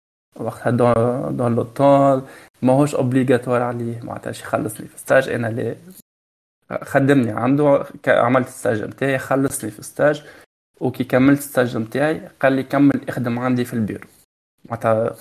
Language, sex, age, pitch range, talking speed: Arabic, male, 20-39, 115-135 Hz, 140 wpm